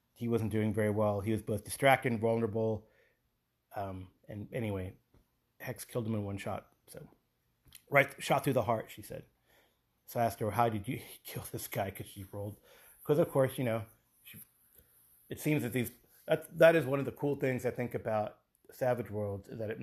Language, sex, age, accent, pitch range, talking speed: English, male, 30-49, American, 105-125 Hz, 200 wpm